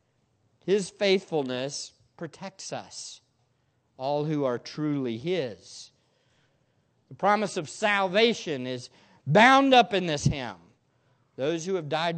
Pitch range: 135-215 Hz